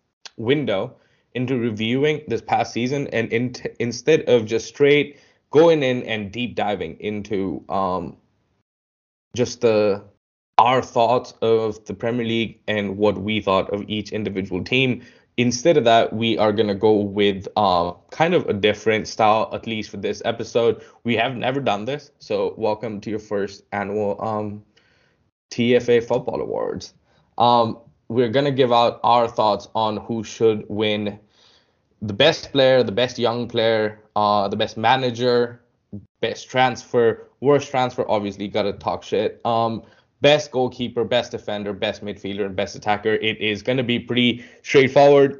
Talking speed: 160 wpm